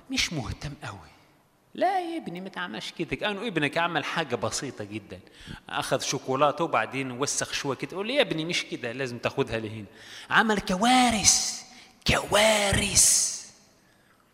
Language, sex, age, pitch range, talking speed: Arabic, male, 30-49, 125-185 Hz, 135 wpm